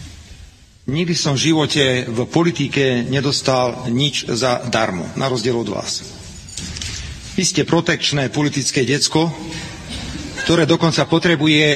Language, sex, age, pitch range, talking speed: Czech, male, 40-59, 125-155 Hz, 110 wpm